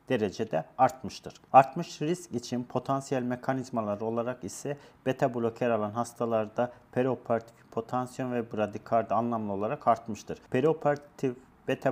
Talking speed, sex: 110 wpm, male